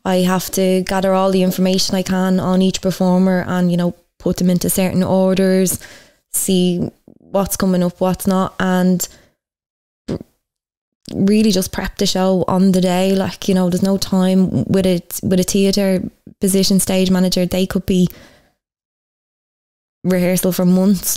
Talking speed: 155 wpm